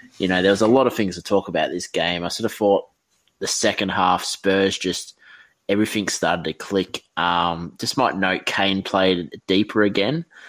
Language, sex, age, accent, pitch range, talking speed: English, male, 20-39, Australian, 85-95 Hz, 195 wpm